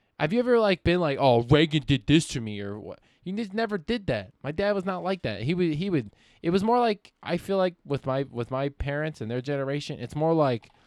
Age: 20-39